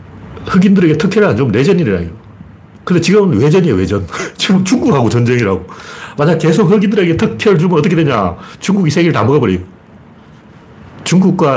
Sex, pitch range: male, 110-165 Hz